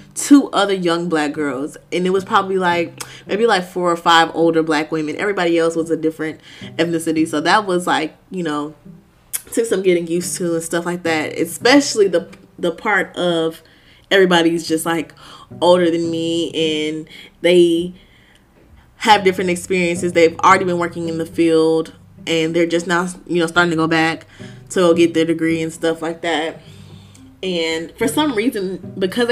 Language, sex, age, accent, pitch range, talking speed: English, female, 20-39, American, 160-180 Hz, 175 wpm